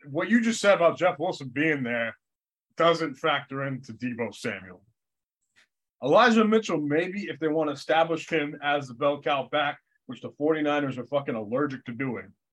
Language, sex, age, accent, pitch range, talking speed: English, male, 20-39, American, 120-165 Hz, 170 wpm